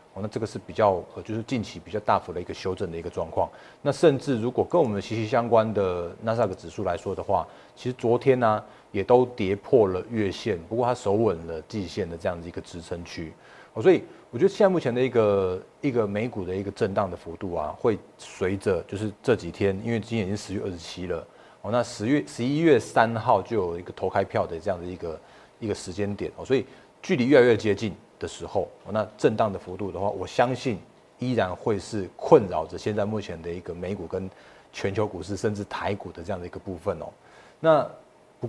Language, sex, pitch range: Chinese, male, 95-120 Hz